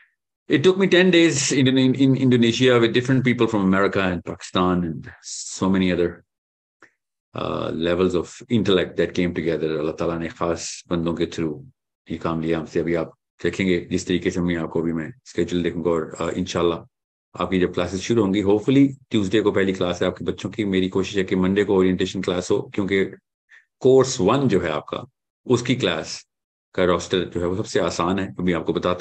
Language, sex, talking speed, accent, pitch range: English, male, 195 wpm, Indian, 90-115 Hz